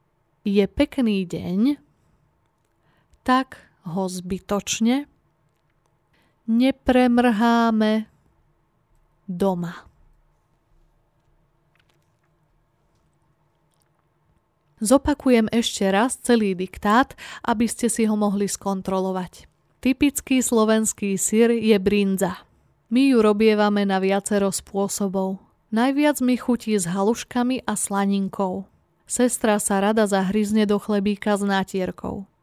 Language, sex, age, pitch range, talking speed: Slovak, female, 20-39, 195-235 Hz, 85 wpm